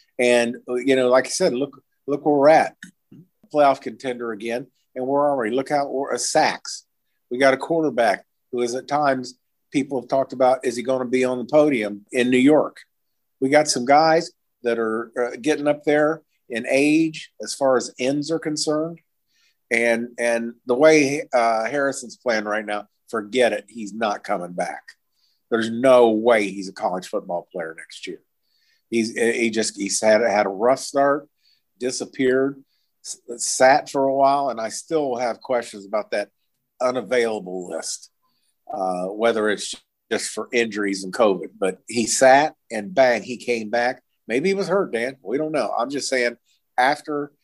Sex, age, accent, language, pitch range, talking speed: male, 50-69, American, English, 115-140 Hz, 170 wpm